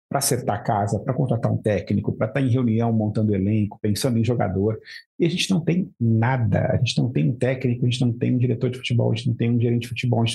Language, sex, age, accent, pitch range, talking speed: Portuguese, male, 50-69, Brazilian, 115-135 Hz, 275 wpm